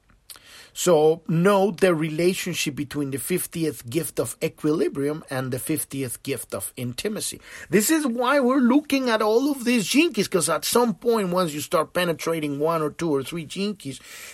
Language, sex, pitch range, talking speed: English, male, 135-205 Hz, 165 wpm